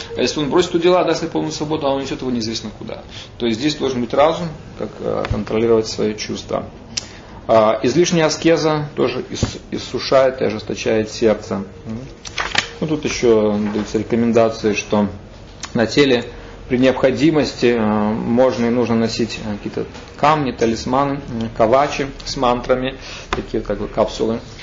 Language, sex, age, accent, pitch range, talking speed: Russian, male, 30-49, native, 105-130 Hz, 135 wpm